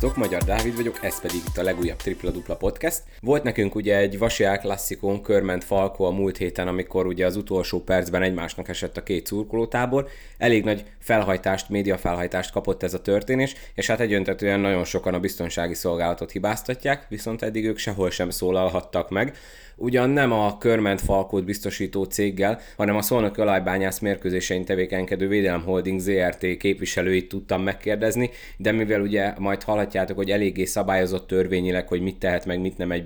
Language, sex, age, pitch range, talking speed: Hungarian, male, 20-39, 90-100 Hz, 165 wpm